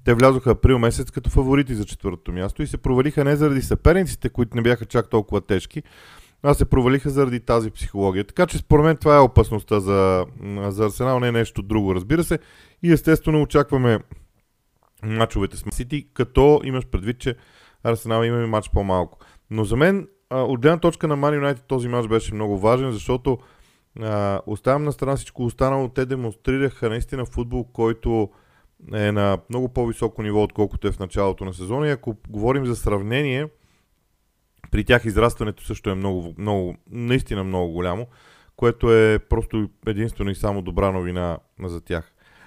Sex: male